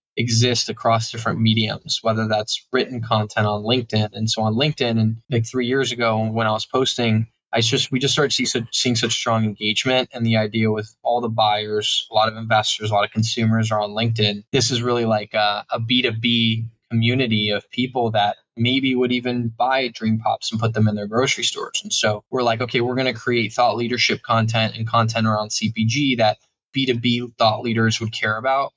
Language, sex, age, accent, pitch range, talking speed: English, male, 10-29, American, 110-125 Hz, 200 wpm